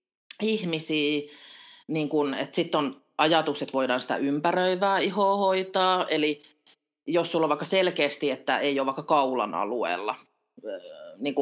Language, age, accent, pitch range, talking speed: Finnish, 30-49, native, 140-200 Hz, 135 wpm